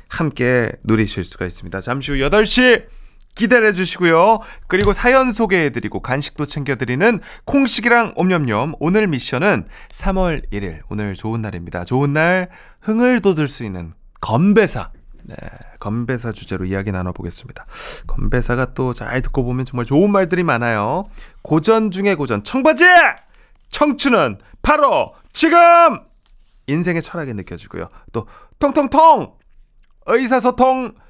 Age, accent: 30-49, native